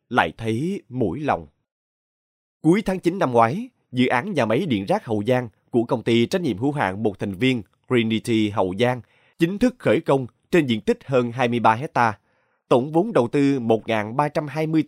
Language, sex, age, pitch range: Vietnamese, male, 20-39, 115-165 Hz